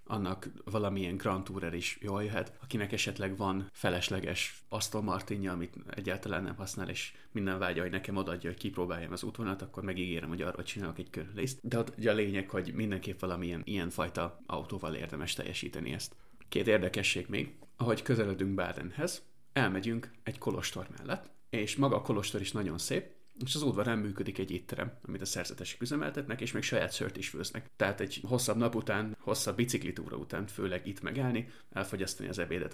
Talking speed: 170 wpm